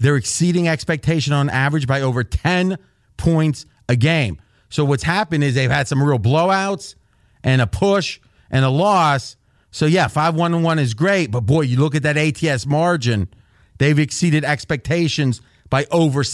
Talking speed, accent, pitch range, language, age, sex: 160 wpm, American, 115-160 Hz, English, 30-49, male